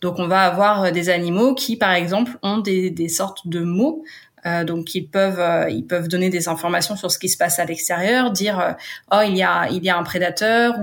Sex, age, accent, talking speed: female, 20-39, French, 240 wpm